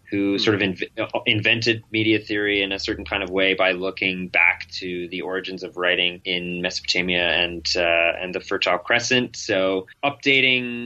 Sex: male